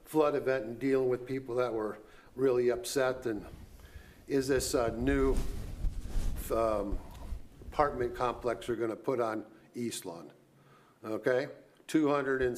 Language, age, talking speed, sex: English, 50-69, 135 wpm, male